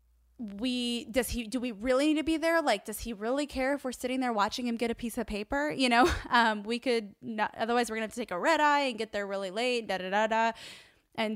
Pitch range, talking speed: 195-240 Hz, 270 wpm